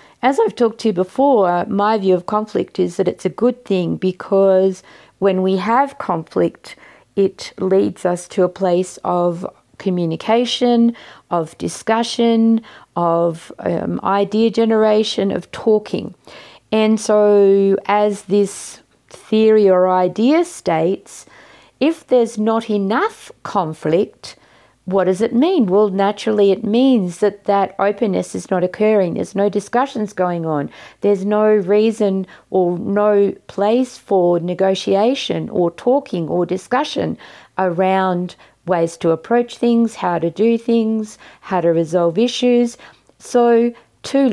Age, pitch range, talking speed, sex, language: 40-59, 180-225 Hz, 130 wpm, female, English